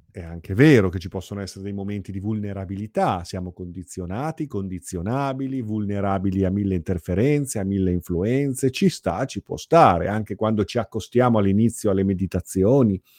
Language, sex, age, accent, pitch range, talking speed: Italian, male, 40-59, native, 100-125 Hz, 150 wpm